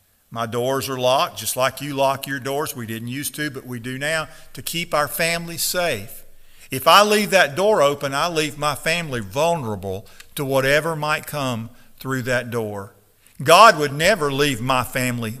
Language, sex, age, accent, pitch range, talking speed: English, male, 50-69, American, 120-170 Hz, 185 wpm